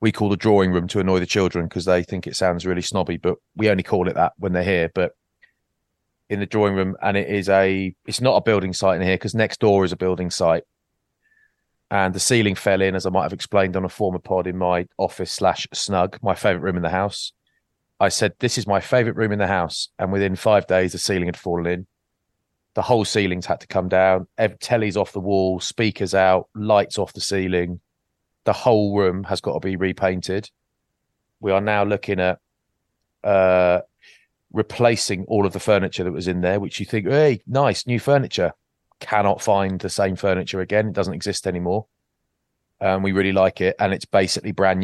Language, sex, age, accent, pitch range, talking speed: English, male, 30-49, British, 90-105 Hz, 210 wpm